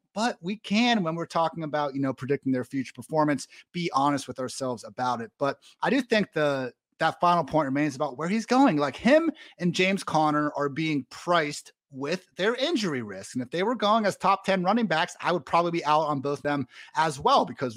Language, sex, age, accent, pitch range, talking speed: English, male, 30-49, American, 140-190 Hz, 220 wpm